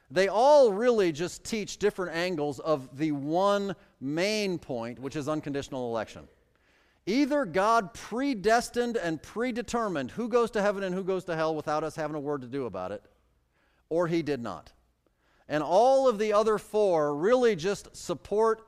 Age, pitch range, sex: 40-59, 145-200 Hz, male